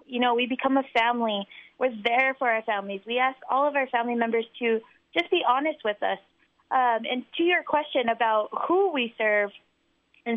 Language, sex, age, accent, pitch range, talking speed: English, female, 20-39, American, 230-275 Hz, 195 wpm